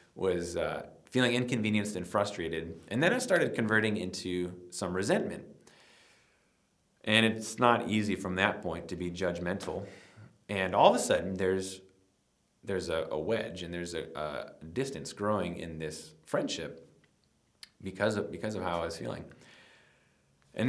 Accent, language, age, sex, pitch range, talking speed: American, English, 30-49, male, 85-110 Hz, 150 wpm